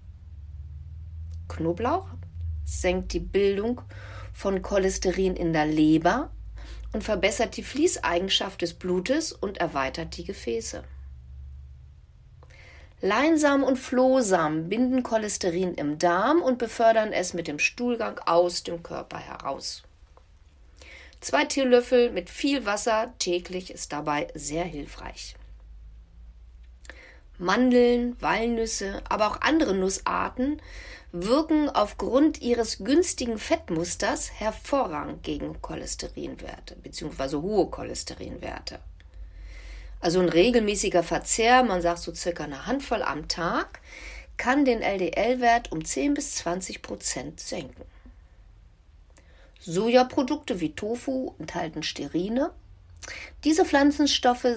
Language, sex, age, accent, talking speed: German, female, 40-59, German, 100 wpm